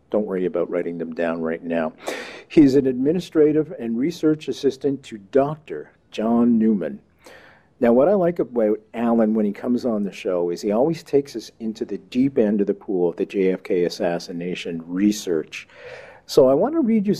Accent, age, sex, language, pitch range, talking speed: American, 50-69, male, English, 105-145 Hz, 185 wpm